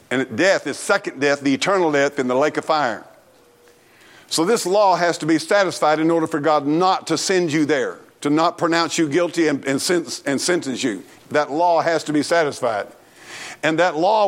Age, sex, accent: 50-69, male, American